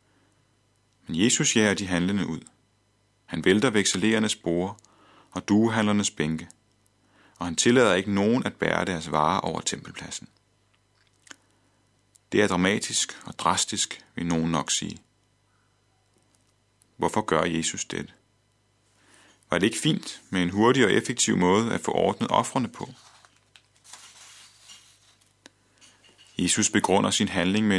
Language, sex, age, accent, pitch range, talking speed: Danish, male, 30-49, native, 95-110 Hz, 125 wpm